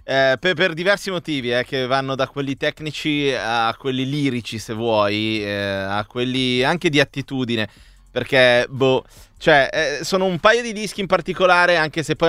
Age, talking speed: 30-49, 170 wpm